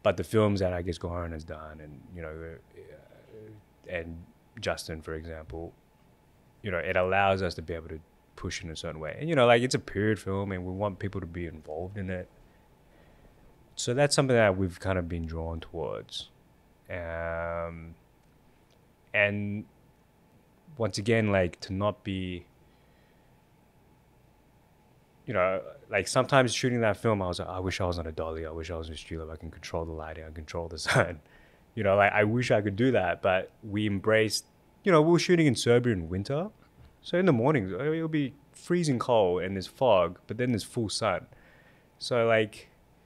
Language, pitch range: English, 85-110 Hz